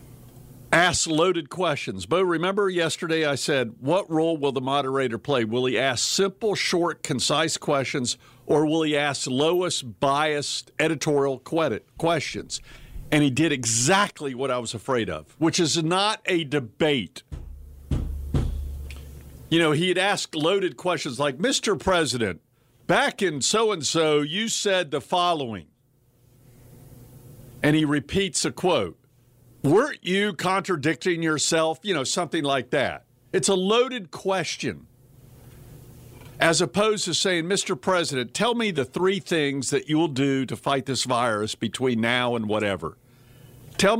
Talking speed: 140 wpm